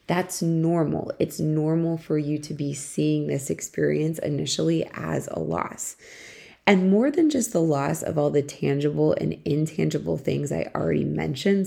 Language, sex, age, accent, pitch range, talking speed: English, female, 20-39, American, 145-180 Hz, 160 wpm